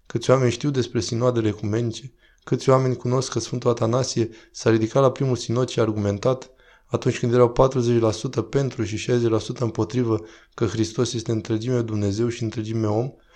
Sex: male